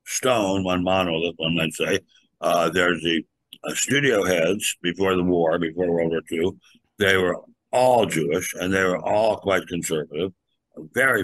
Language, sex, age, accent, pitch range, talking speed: English, male, 60-79, American, 90-110 Hz, 160 wpm